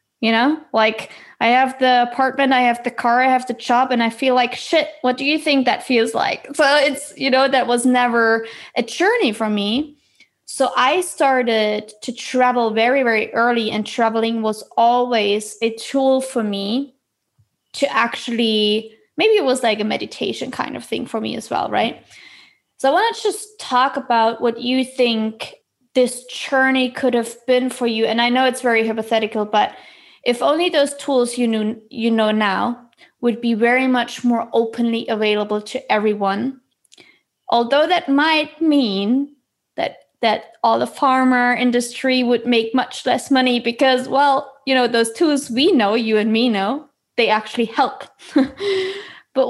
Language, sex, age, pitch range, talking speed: English, female, 20-39, 225-270 Hz, 175 wpm